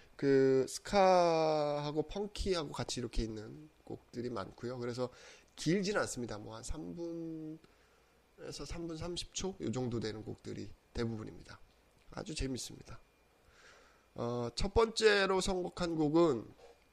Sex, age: male, 20-39